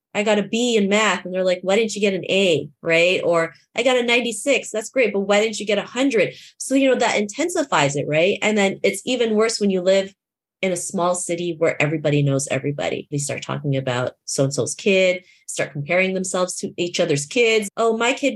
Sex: female